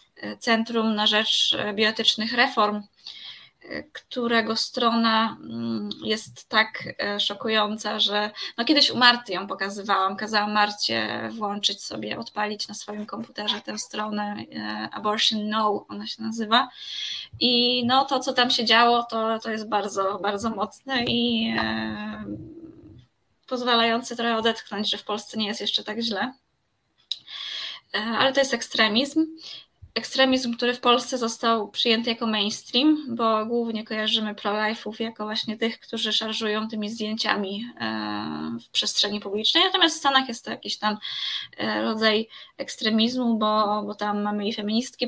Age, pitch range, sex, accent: 20-39, 205-235 Hz, female, native